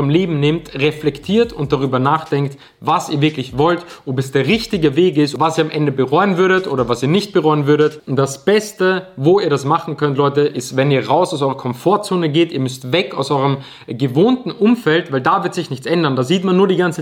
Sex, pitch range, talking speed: male, 125-160 Hz, 225 wpm